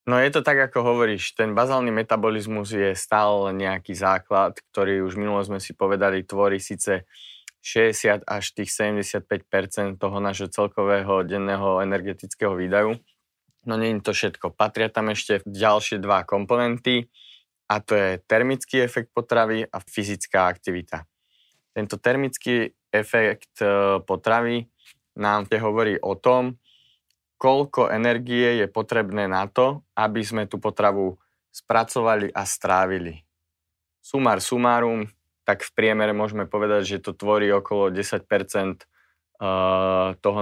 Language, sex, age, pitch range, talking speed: Slovak, male, 20-39, 100-115 Hz, 125 wpm